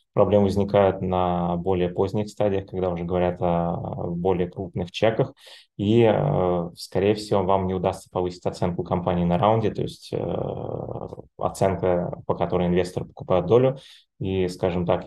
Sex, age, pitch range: male, 20-39, 90-100 Hz